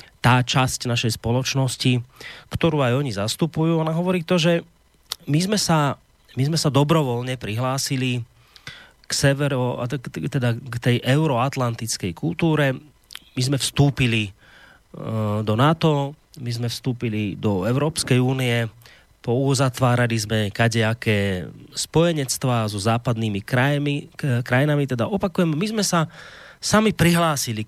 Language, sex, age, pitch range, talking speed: Slovak, male, 30-49, 115-150 Hz, 115 wpm